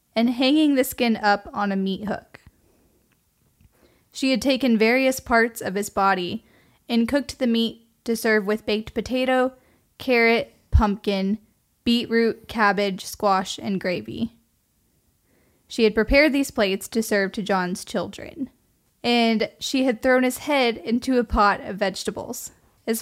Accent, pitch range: American, 200-240 Hz